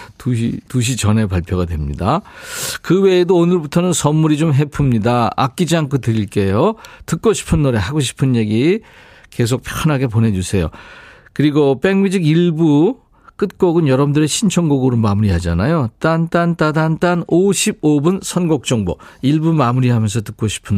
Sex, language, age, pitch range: male, Korean, 40-59, 110-170 Hz